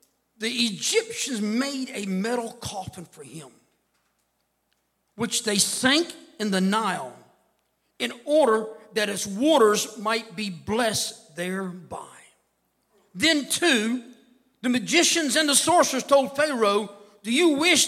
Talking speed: 115 wpm